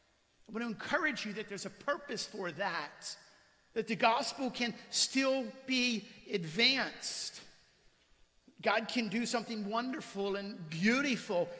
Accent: American